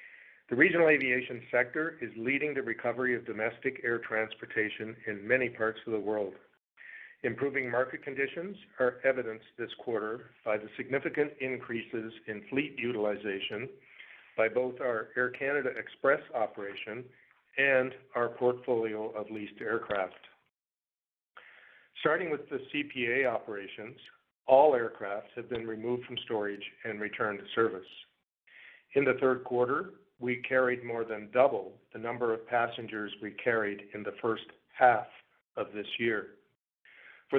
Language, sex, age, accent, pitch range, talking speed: English, male, 50-69, American, 110-130 Hz, 135 wpm